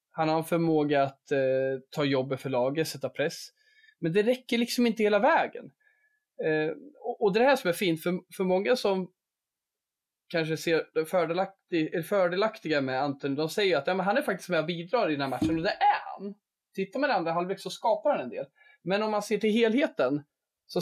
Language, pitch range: Swedish, 145-205 Hz